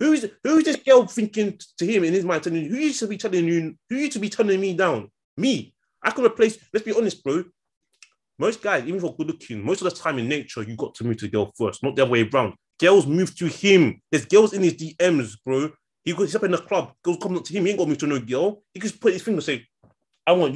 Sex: male